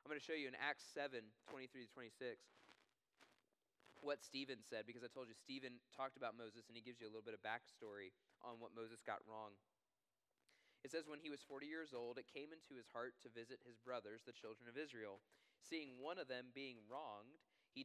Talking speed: 215 wpm